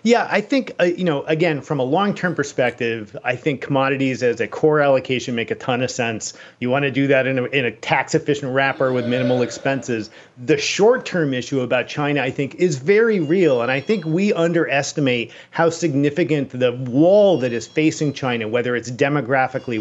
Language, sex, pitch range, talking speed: English, male, 125-165 Hz, 190 wpm